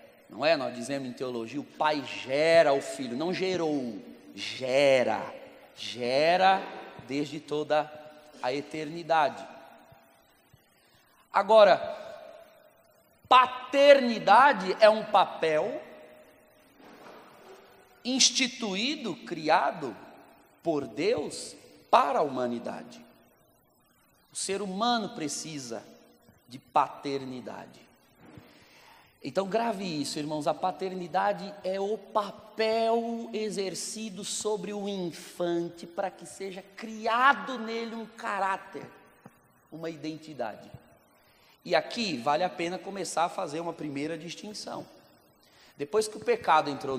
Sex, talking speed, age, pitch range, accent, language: male, 95 wpm, 40-59, 155-230 Hz, Brazilian, Portuguese